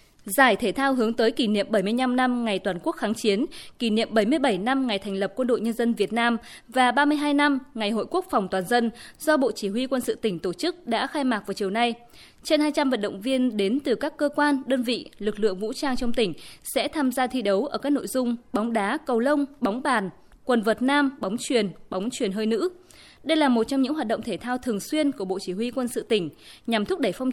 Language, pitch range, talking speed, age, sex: Vietnamese, 210-275 Hz, 255 wpm, 20-39, female